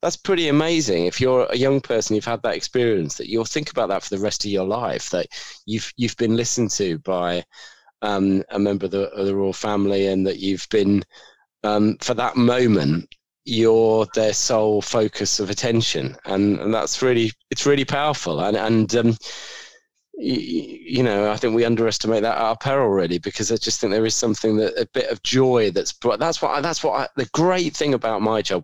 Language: English